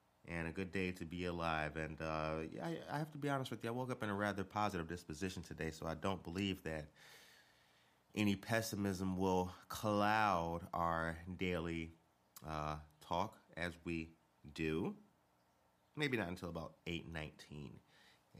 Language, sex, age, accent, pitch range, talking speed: English, male, 30-49, American, 80-95 Hz, 155 wpm